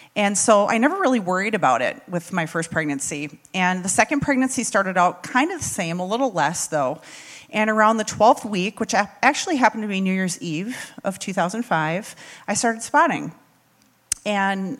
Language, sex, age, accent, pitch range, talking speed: English, female, 40-59, American, 165-205 Hz, 185 wpm